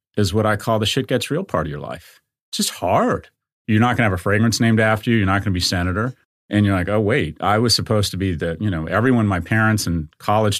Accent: American